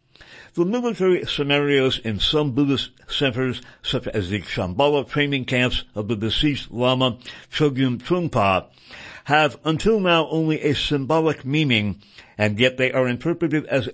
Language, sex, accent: English, male, American